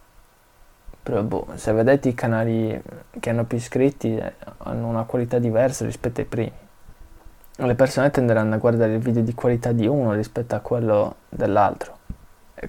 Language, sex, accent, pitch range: Italian, male, native, 115-145 Hz